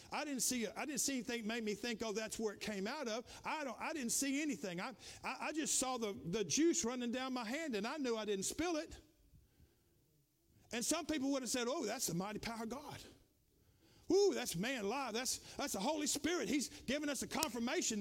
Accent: American